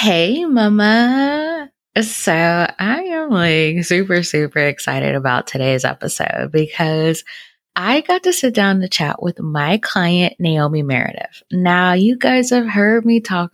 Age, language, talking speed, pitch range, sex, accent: 20-39, English, 140 wpm, 155-215 Hz, female, American